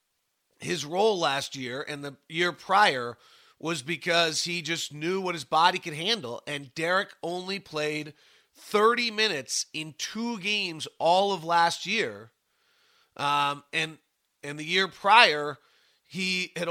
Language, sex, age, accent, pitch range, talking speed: English, male, 40-59, American, 140-175 Hz, 140 wpm